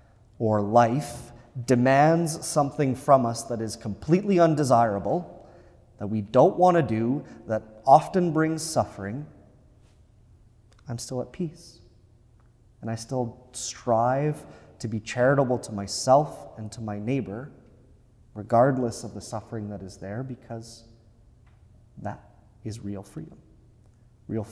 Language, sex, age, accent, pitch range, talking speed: English, male, 30-49, American, 105-125 Hz, 120 wpm